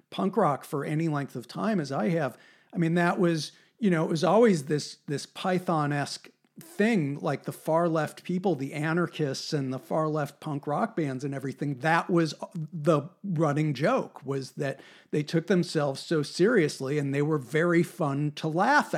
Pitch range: 150-180 Hz